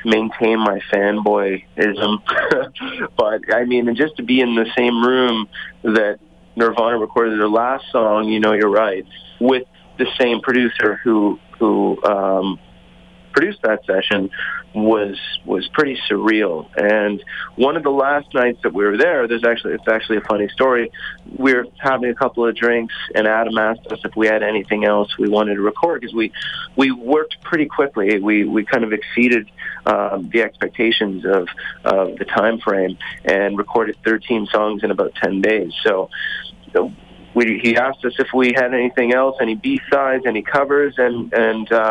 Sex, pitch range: male, 105-120 Hz